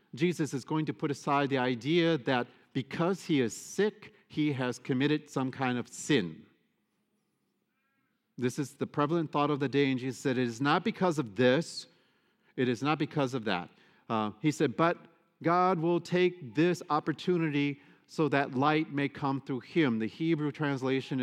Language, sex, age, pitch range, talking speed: English, male, 50-69, 130-155 Hz, 175 wpm